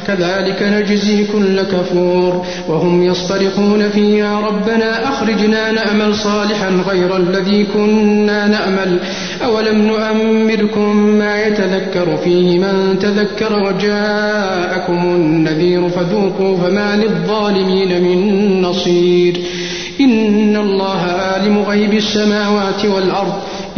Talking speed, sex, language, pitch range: 90 wpm, male, Arabic, 180-210 Hz